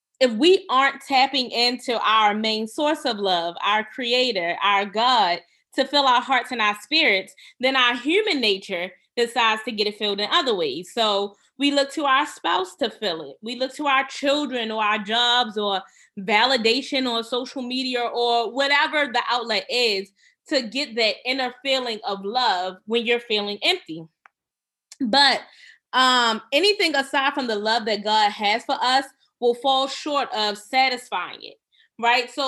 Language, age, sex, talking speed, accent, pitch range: English, 20-39, female, 170 wpm, American, 215-280 Hz